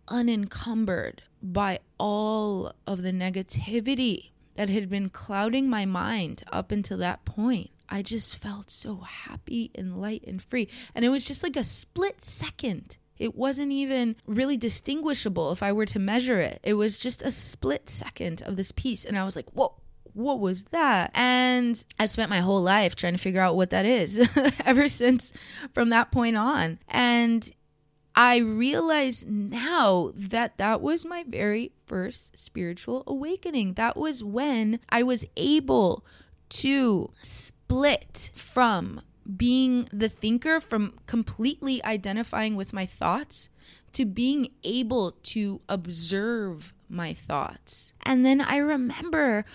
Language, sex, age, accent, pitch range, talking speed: English, female, 20-39, American, 205-260 Hz, 145 wpm